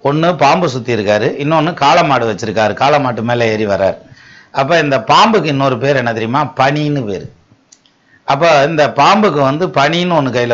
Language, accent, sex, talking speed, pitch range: Tamil, native, male, 155 wpm, 115-150 Hz